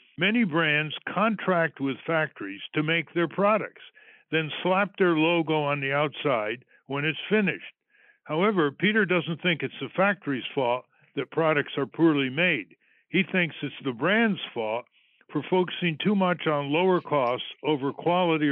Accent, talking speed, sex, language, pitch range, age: American, 150 wpm, male, English, 140-180 Hz, 60-79